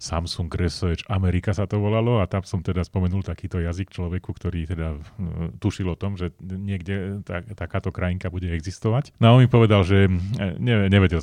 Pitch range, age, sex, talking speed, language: 80-95 Hz, 30-49, male, 170 wpm, Slovak